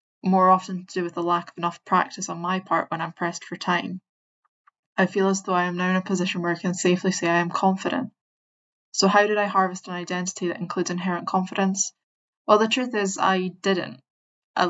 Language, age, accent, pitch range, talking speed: English, 10-29, British, 170-190 Hz, 220 wpm